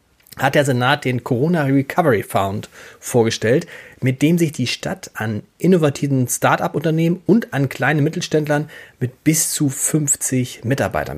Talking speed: 135 wpm